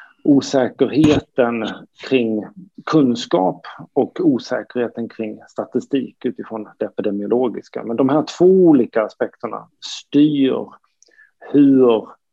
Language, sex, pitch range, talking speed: Swedish, male, 115-150 Hz, 90 wpm